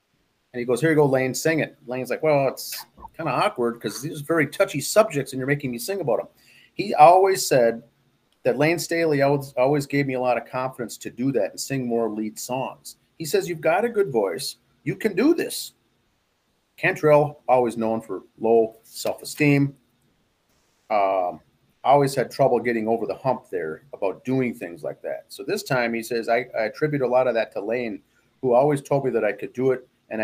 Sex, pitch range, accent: male, 120-160 Hz, American